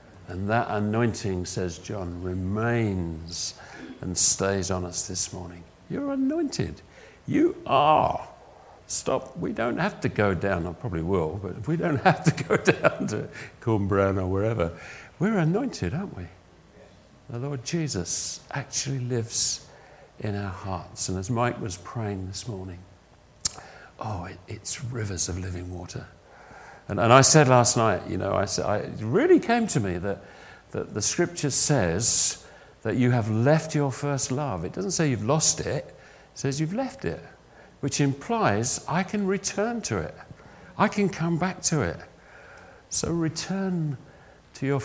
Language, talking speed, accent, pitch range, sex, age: English, 160 wpm, British, 90-145 Hz, male, 50-69